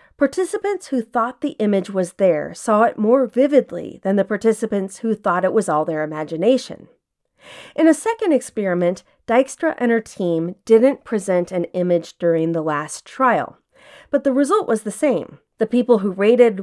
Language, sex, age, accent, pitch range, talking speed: English, female, 40-59, American, 180-265 Hz, 170 wpm